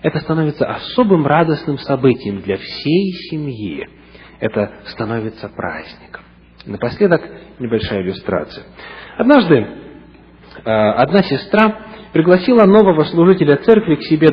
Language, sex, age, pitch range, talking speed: English, male, 40-59, 130-200 Hz, 95 wpm